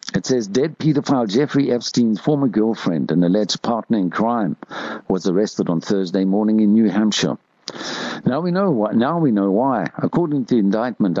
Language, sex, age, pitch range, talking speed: English, male, 60-79, 90-115 Hz, 175 wpm